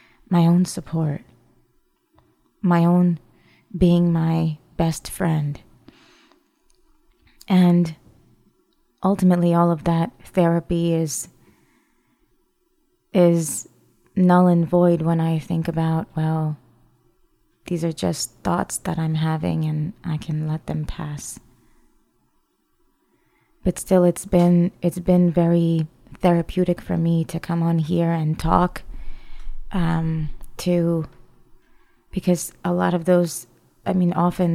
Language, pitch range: English, 160-180 Hz